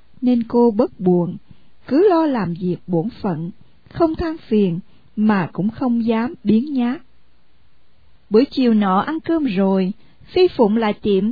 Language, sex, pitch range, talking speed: Vietnamese, female, 205-290 Hz, 155 wpm